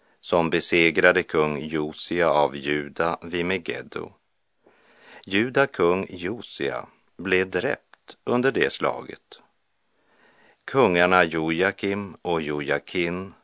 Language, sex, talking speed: Spanish, male, 90 wpm